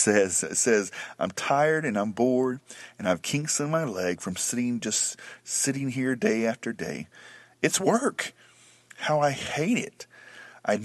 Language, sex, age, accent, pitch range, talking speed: English, male, 40-59, American, 105-145 Hz, 155 wpm